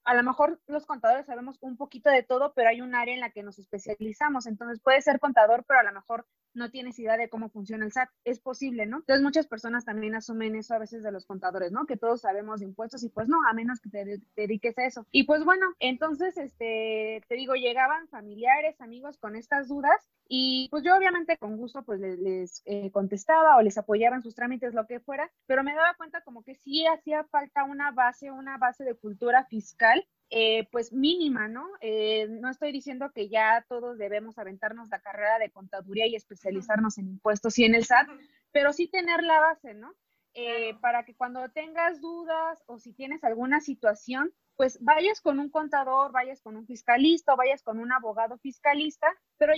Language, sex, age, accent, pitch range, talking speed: Spanish, female, 20-39, Mexican, 225-290 Hz, 205 wpm